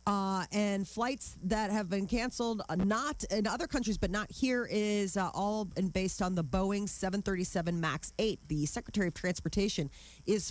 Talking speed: 170 wpm